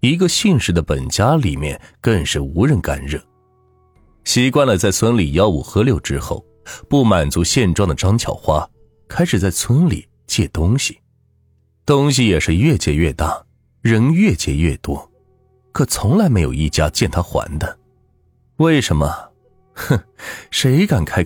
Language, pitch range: Chinese, 85-130 Hz